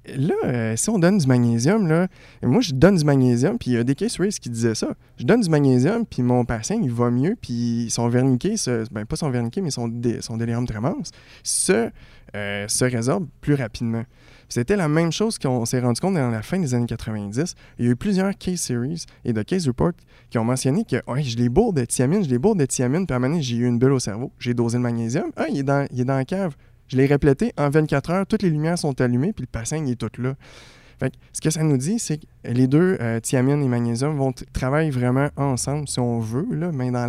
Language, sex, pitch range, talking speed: French, male, 120-145 Hz, 255 wpm